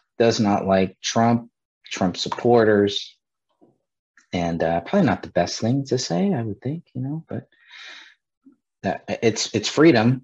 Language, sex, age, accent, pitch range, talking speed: English, male, 30-49, American, 90-110 Hz, 145 wpm